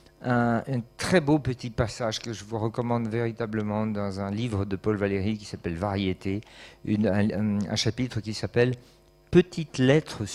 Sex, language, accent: male, French, French